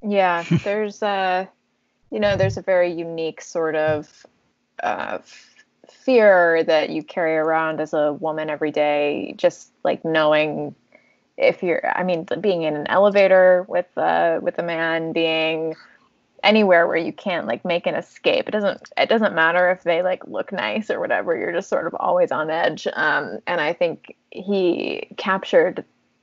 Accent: American